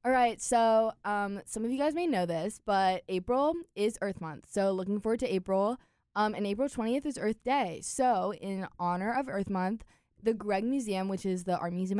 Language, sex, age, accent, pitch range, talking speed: English, female, 10-29, American, 180-225 Hz, 210 wpm